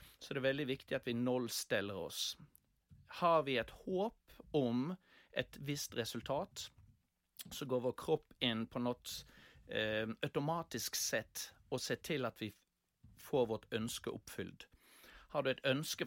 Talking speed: 145 wpm